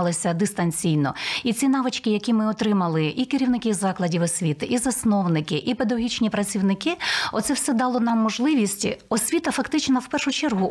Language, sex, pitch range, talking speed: Ukrainian, female, 195-255 Hz, 145 wpm